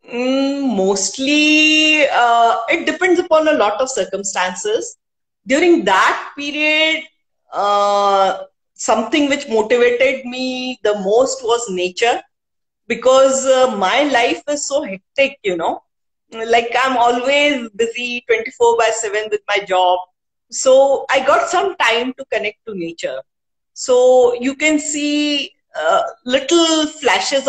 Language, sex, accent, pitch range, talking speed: English, female, Indian, 220-290 Hz, 120 wpm